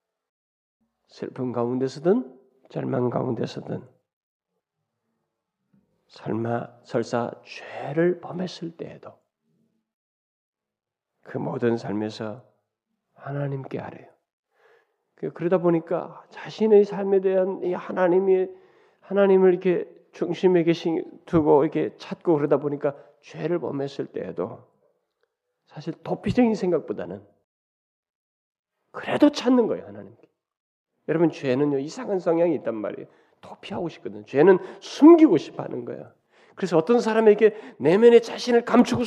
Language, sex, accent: Korean, male, native